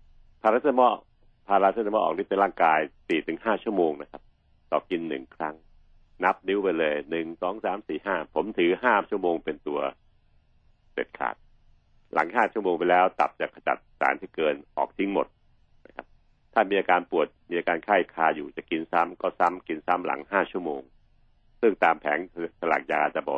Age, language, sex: 60-79, Thai, male